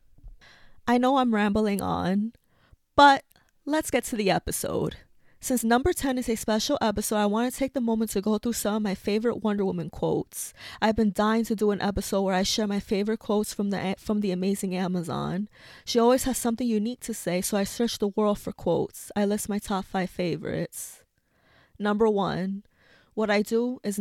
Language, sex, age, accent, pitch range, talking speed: English, female, 20-39, American, 195-225 Hz, 195 wpm